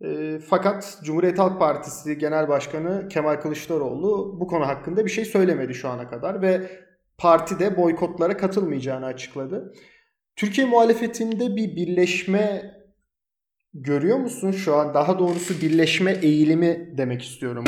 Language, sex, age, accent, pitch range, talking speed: Turkish, male, 30-49, native, 150-195 Hz, 125 wpm